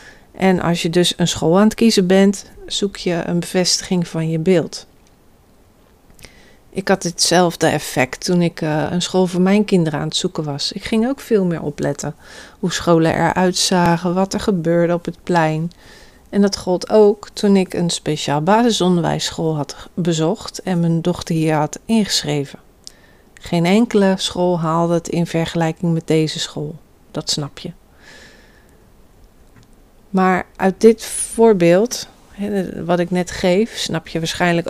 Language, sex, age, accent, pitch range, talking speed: Dutch, female, 40-59, Dutch, 165-195 Hz, 155 wpm